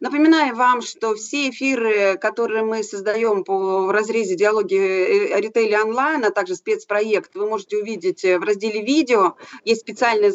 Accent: native